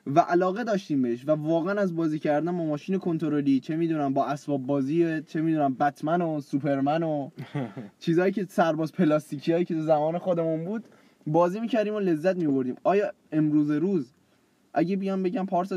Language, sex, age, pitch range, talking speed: Persian, male, 10-29, 140-175 Hz, 170 wpm